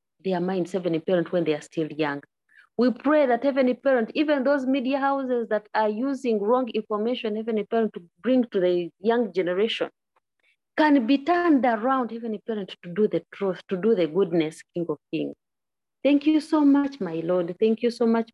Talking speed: 190 wpm